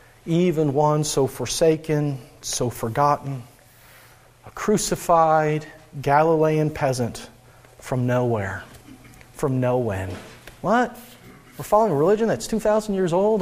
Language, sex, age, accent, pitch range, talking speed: English, male, 40-59, American, 125-155 Hz, 105 wpm